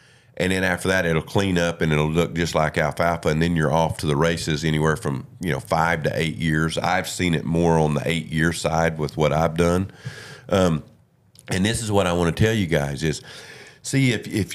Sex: male